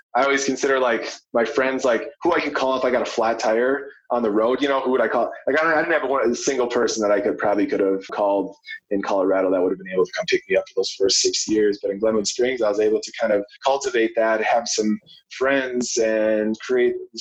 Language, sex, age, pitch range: English, male, 20-39, 115-150 Hz